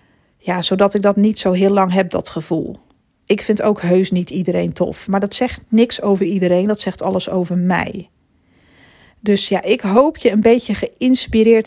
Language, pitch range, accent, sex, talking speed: Dutch, 190-220 Hz, Dutch, female, 190 wpm